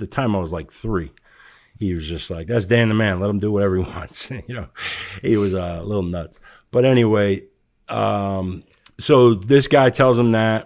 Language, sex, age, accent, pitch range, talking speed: English, male, 50-69, American, 100-120 Hz, 210 wpm